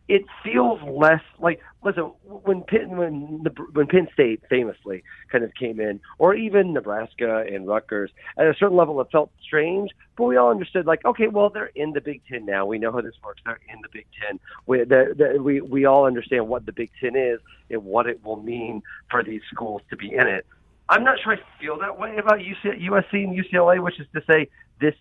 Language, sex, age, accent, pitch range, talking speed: English, male, 40-59, American, 115-160 Hz, 220 wpm